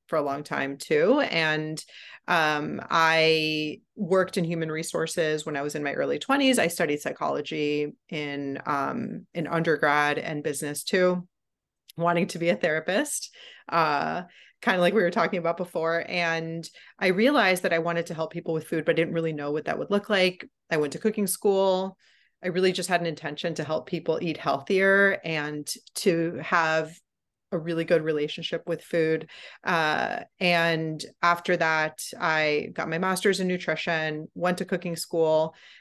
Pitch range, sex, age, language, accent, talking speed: 155-185 Hz, female, 30-49, English, American, 175 wpm